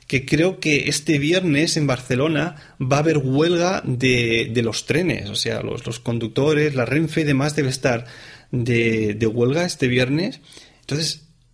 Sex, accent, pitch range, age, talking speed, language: male, Spanish, 120-150 Hz, 30-49, 165 wpm, Spanish